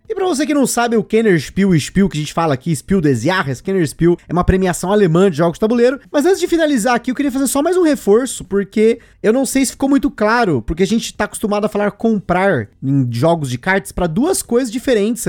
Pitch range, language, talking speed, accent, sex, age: 170-240 Hz, Portuguese, 245 wpm, Brazilian, male, 20-39